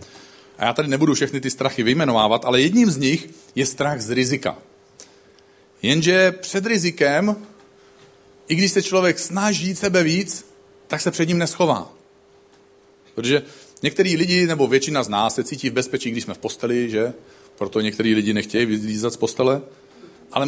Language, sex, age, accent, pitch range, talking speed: Czech, male, 40-59, native, 125-175 Hz, 160 wpm